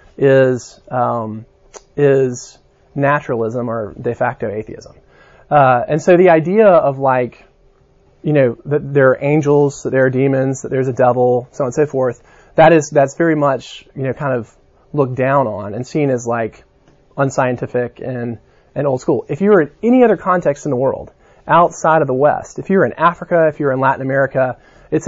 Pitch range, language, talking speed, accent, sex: 125-150 Hz, English, 185 wpm, American, male